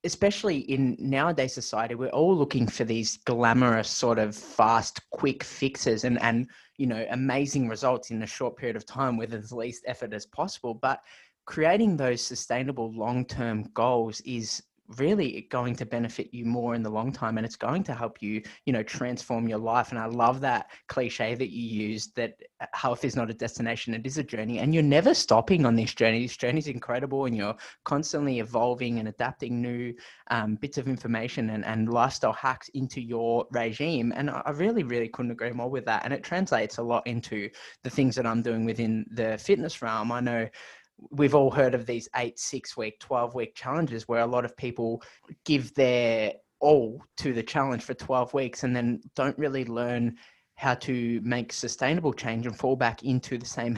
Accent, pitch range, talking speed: Australian, 115-135 Hz, 195 wpm